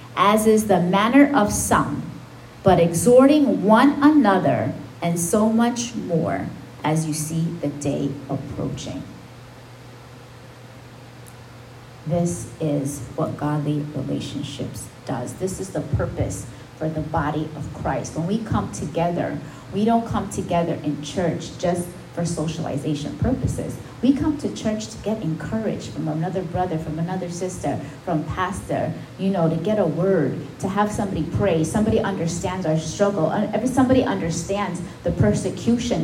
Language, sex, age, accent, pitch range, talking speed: English, female, 30-49, American, 145-195 Hz, 135 wpm